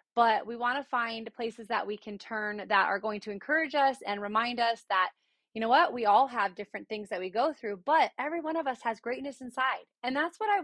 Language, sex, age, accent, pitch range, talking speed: English, female, 20-39, American, 210-265 Hz, 250 wpm